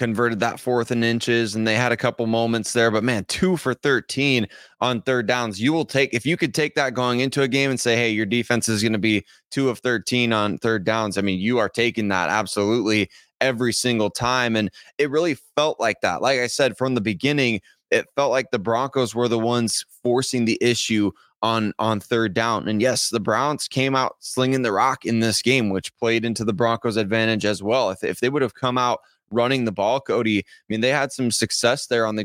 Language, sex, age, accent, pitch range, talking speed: English, male, 20-39, American, 110-130 Hz, 230 wpm